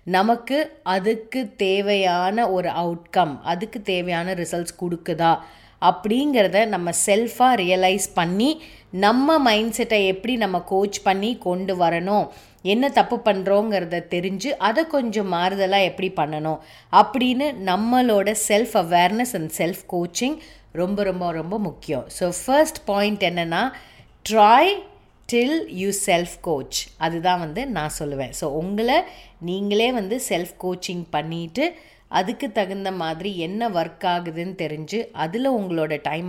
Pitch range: 170-220 Hz